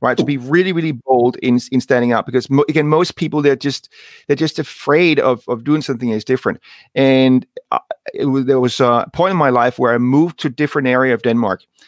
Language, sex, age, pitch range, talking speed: English, male, 40-59, 125-160 Hz, 230 wpm